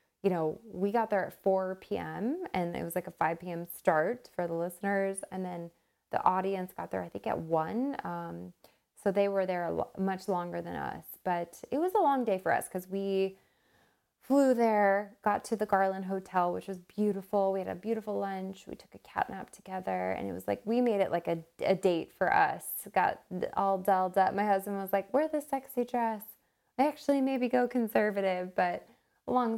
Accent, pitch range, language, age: American, 180-210 Hz, English, 20-39